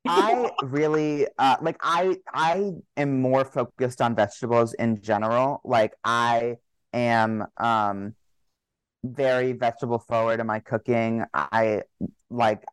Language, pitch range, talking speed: English, 115-135 Hz, 120 wpm